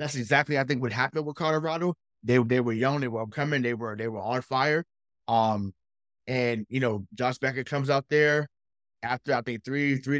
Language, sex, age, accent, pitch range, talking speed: English, male, 20-39, American, 125-180 Hz, 205 wpm